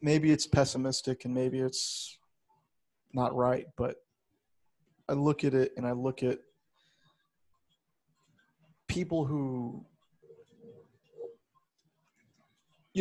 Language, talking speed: English, 90 wpm